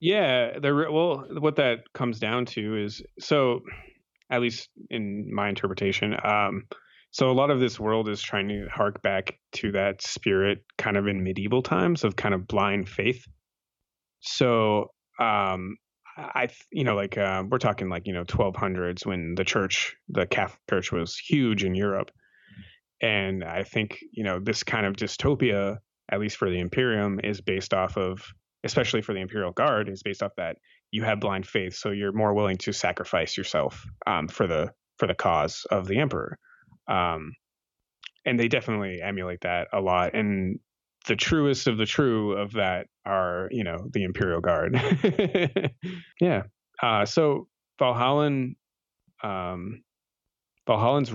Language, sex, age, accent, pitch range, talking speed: English, male, 30-49, American, 95-125 Hz, 160 wpm